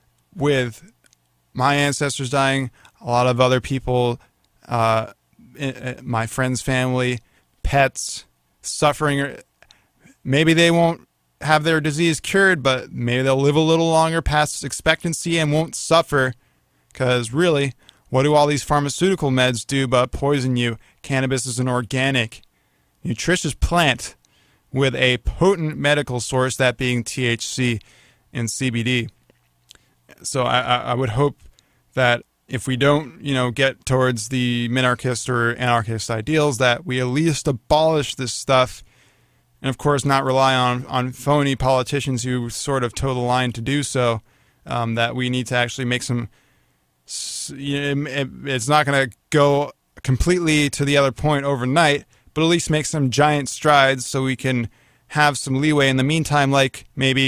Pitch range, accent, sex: 125-145 Hz, American, male